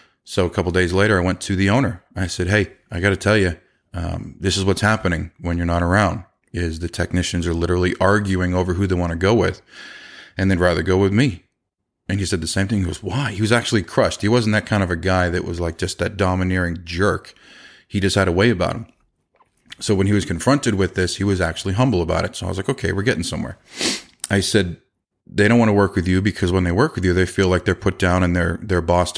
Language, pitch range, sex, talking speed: English, 90-110 Hz, male, 260 wpm